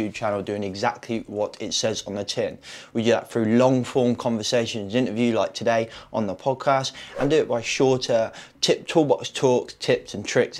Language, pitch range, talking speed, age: English, 105-135 Hz, 185 wpm, 20-39